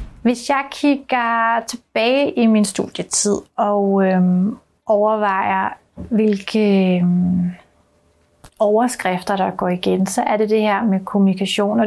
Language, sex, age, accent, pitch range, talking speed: Danish, female, 30-49, native, 195-235 Hz, 120 wpm